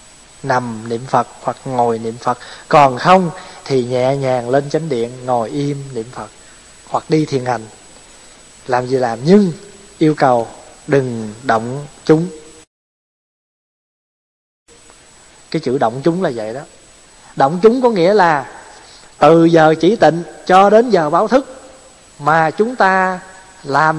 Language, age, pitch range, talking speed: Vietnamese, 20-39, 135-190 Hz, 145 wpm